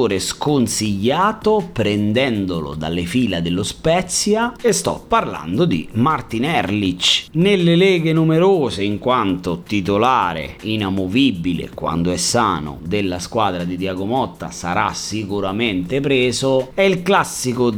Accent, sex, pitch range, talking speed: native, male, 95-160 Hz, 110 wpm